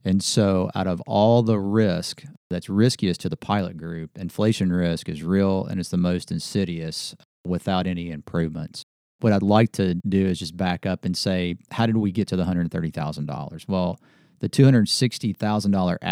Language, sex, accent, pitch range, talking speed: English, male, American, 90-105 Hz, 170 wpm